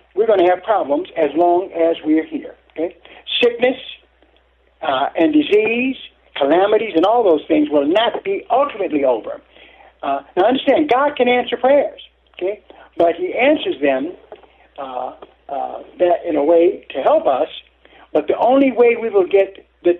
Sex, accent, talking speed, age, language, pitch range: male, American, 160 wpm, 60-79, English, 170-280 Hz